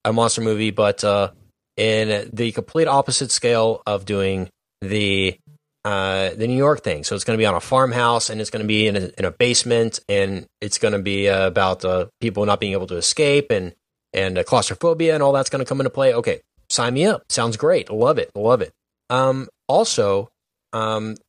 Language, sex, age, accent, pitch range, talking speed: English, male, 10-29, American, 105-135 Hz, 205 wpm